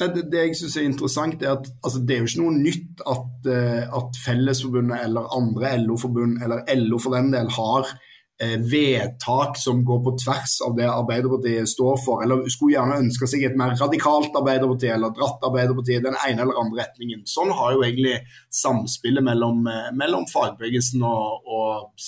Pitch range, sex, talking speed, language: 125-160 Hz, male, 170 wpm, English